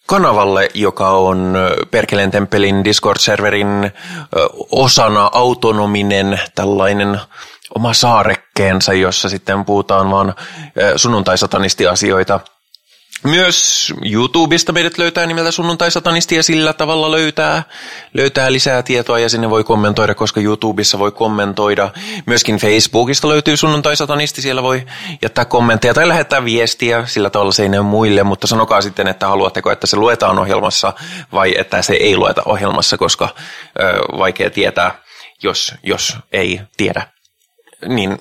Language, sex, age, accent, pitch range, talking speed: Finnish, male, 20-39, native, 100-135 Hz, 125 wpm